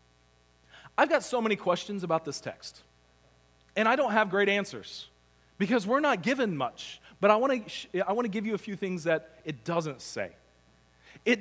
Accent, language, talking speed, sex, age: American, English, 180 wpm, male, 40-59